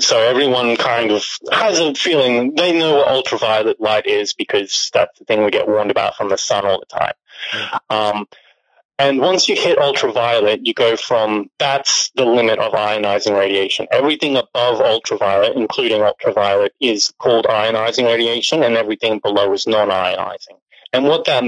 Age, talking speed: 30-49, 165 wpm